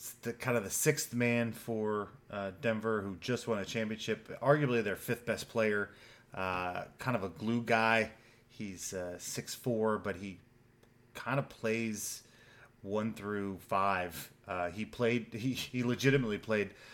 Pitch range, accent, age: 100-120 Hz, American, 30-49